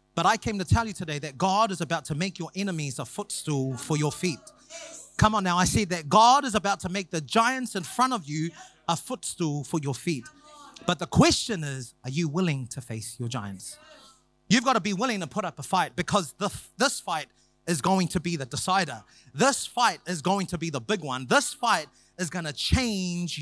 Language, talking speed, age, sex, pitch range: English, 225 wpm, 30-49, male, 145-200 Hz